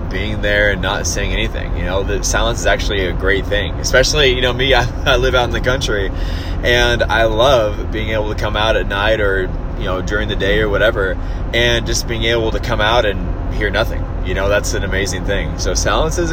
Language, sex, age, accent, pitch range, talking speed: English, male, 20-39, American, 95-130 Hz, 230 wpm